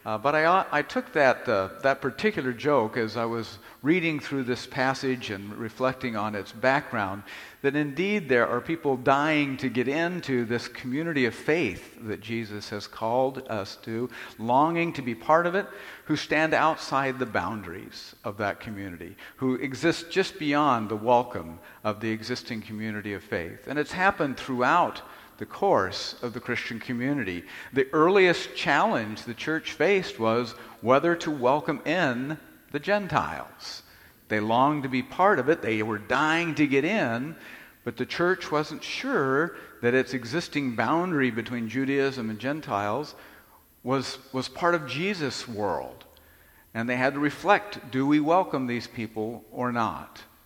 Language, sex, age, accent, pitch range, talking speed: English, male, 50-69, American, 115-150 Hz, 160 wpm